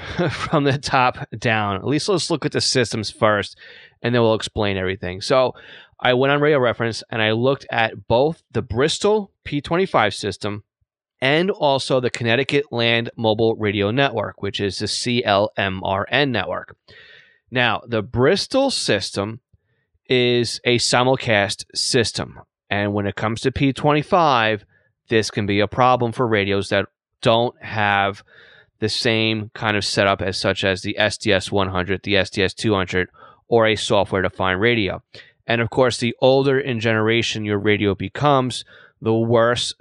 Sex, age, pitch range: male, 30-49, 100-125 Hz